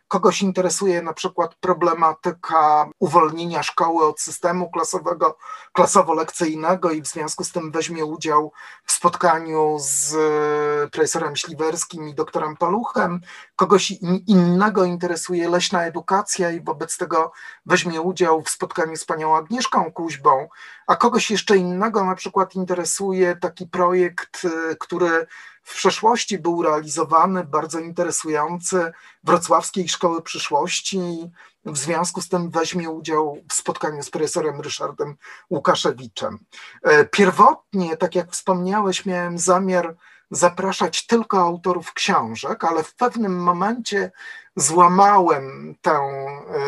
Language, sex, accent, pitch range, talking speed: Polish, male, native, 160-190 Hz, 115 wpm